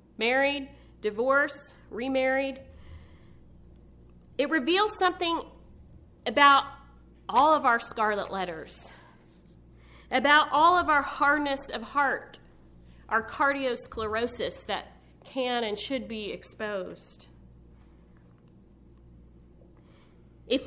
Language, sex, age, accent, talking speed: English, female, 40-59, American, 80 wpm